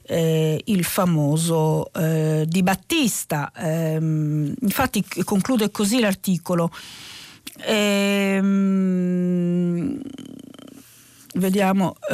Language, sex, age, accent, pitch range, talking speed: Italian, female, 40-59, native, 180-235 Hz, 55 wpm